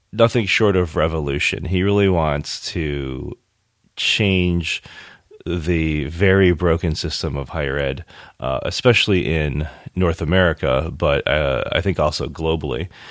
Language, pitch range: English, 80-100 Hz